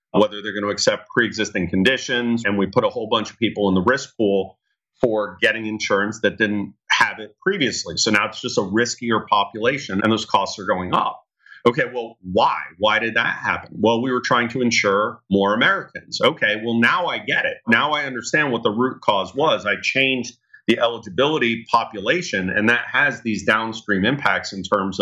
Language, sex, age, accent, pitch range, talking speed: English, male, 40-59, American, 105-120 Hz, 195 wpm